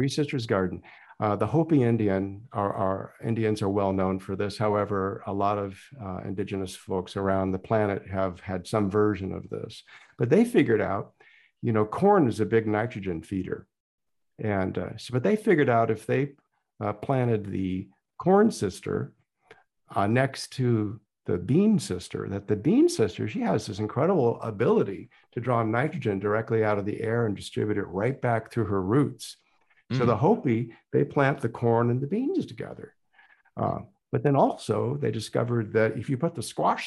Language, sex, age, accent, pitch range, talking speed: English, male, 50-69, American, 100-125 Hz, 180 wpm